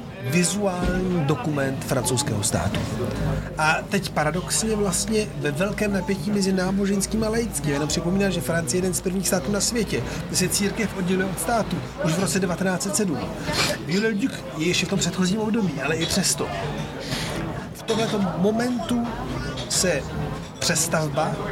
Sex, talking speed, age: male, 140 wpm, 40-59